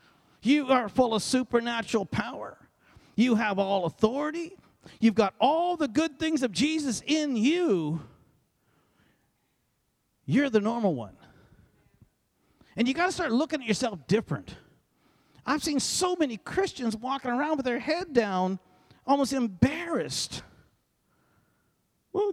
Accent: American